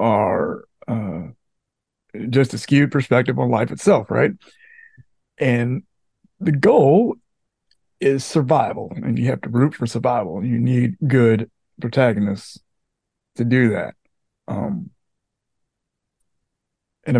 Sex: male